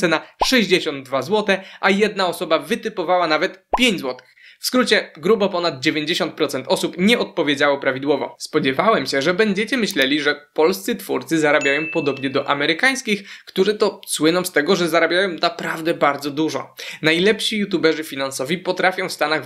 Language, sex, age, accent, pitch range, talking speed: Polish, male, 20-39, native, 150-195 Hz, 145 wpm